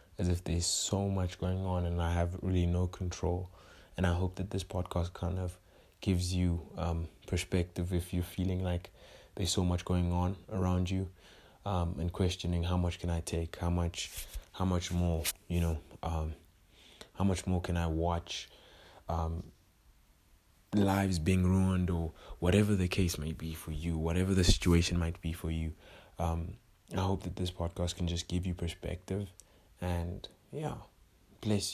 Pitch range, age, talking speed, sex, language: 85-95 Hz, 20-39, 170 wpm, male, English